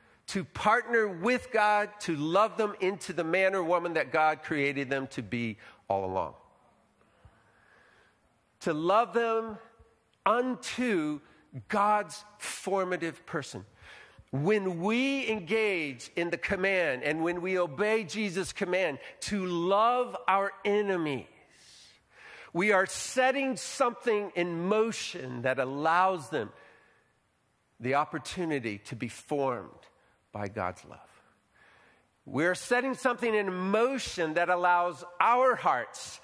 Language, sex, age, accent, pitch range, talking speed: English, male, 50-69, American, 150-205 Hz, 115 wpm